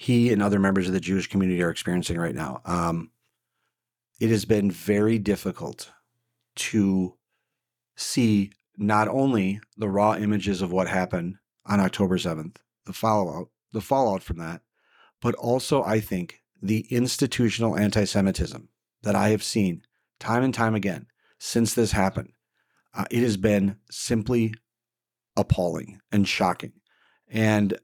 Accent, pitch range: American, 95-115 Hz